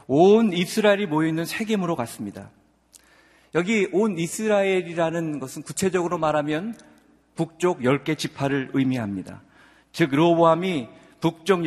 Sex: male